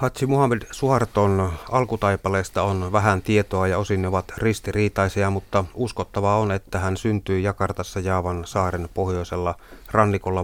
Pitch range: 90-105 Hz